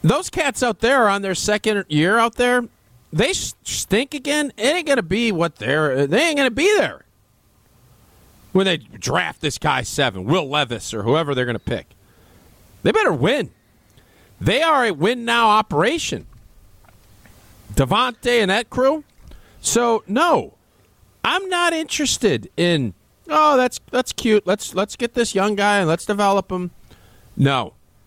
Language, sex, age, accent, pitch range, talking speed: English, male, 40-59, American, 175-275 Hz, 155 wpm